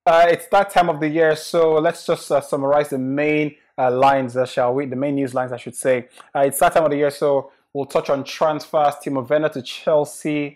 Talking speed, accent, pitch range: 240 wpm, Nigerian, 135-160 Hz